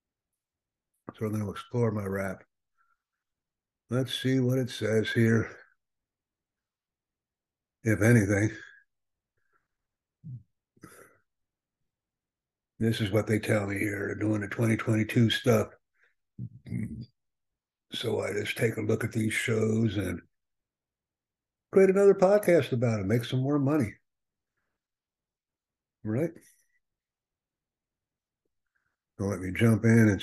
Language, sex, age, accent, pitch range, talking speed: English, male, 60-79, American, 100-115 Hz, 100 wpm